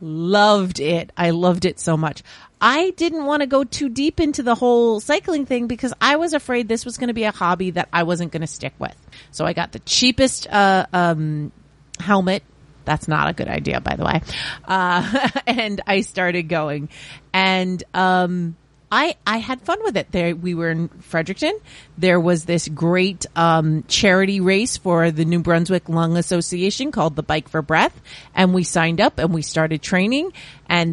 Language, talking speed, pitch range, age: English, 190 wpm, 165-220 Hz, 30-49